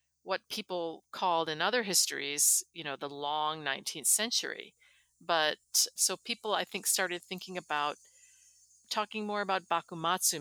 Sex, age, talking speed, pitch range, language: female, 50-69, 140 wpm, 150-185 Hz, English